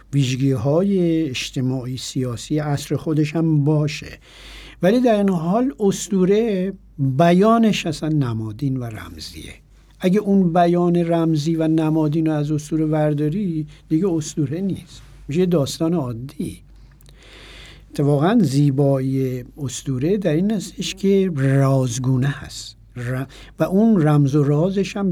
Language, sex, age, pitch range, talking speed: Persian, male, 60-79, 135-180 Hz, 115 wpm